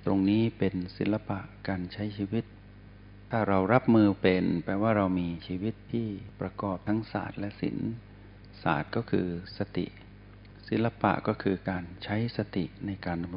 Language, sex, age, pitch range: Thai, male, 60-79, 95-110 Hz